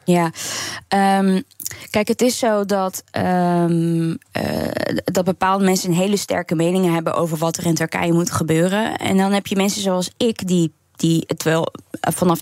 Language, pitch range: Dutch, 170-215 Hz